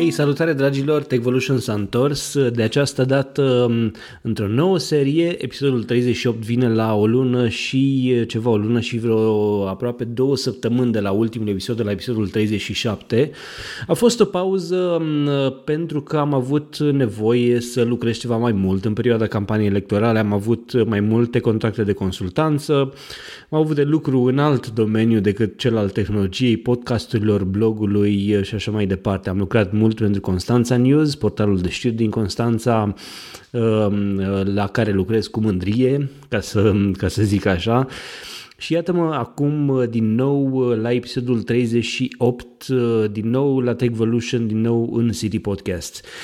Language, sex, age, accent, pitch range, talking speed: Romanian, male, 20-39, native, 110-135 Hz, 150 wpm